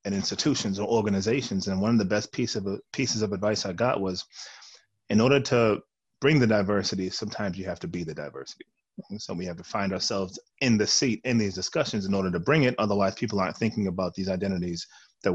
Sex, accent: male, American